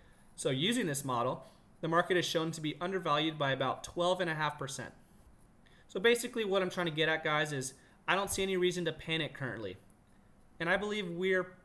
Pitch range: 135-165 Hz